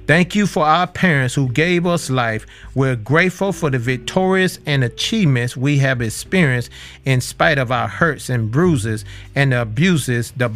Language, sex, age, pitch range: English, male, 40-59, 120-165 Hz